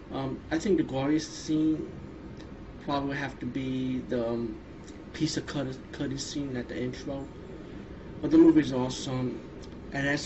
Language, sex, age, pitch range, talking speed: English, male, 20-39, 125-155 Hz, 165 wpm